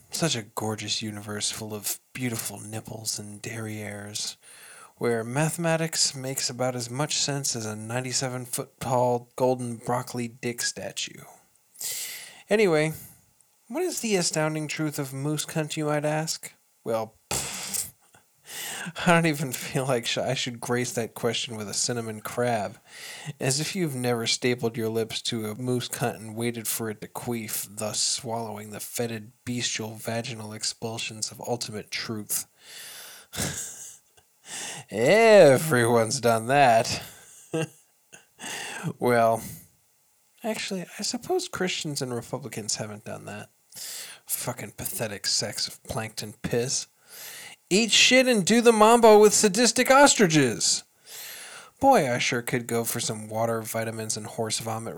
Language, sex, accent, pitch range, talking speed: English, male, American, 115-155 Hz, 130 wpm